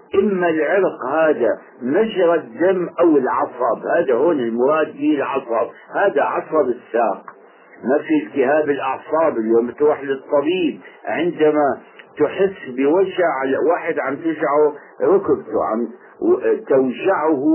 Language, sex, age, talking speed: Arabic, male, 60-79, 105 wpm